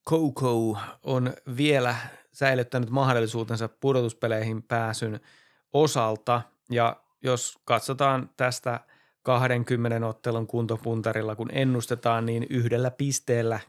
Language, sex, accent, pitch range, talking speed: Finnish, male, native, 115-130 Hz, 90 wpm